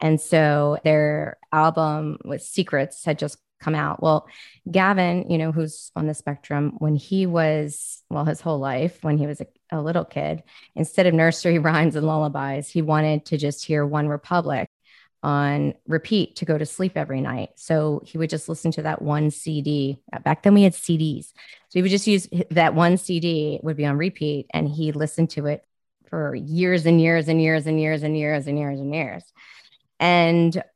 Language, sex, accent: English, female, American